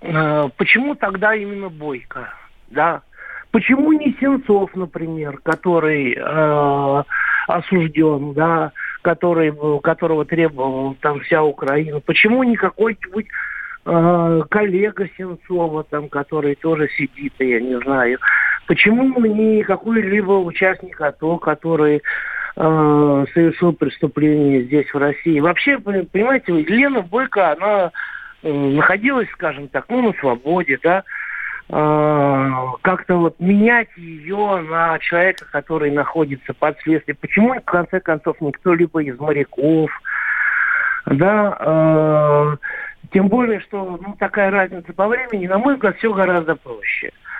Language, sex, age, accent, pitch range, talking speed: Russian, male, 50-69, native, 150-200 Hz, 110 wpm